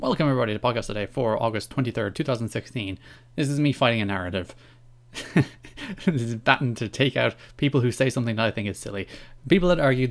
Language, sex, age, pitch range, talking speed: English, male, 20-39, 115-135 Hz, 195 wpm